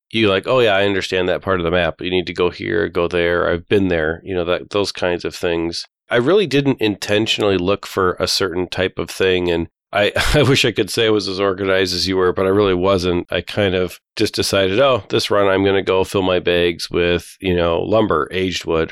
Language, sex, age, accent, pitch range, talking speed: English, male, 40-59, American, 90-100 Hz, 245 wpm